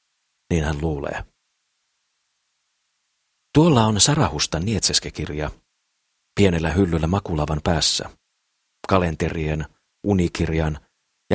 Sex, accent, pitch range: male, native, 80-100 Hz